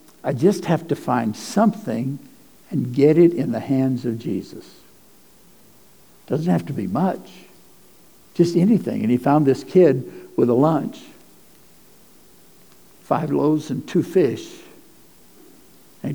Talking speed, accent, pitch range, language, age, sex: 130 wpm, American, 130-175 Hz, English, 60-79, male